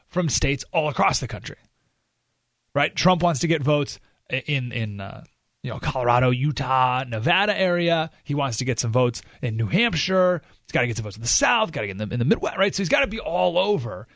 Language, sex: English, male